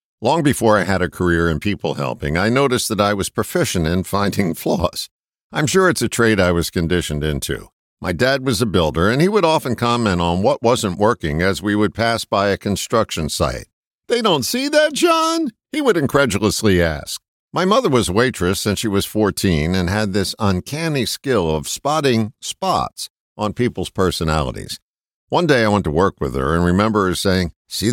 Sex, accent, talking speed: male, American, 195 wpm